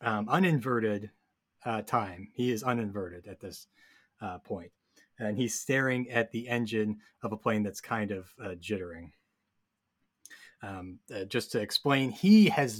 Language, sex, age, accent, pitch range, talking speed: English, male, 30-49, American, 105-130 Hz, 150 wpm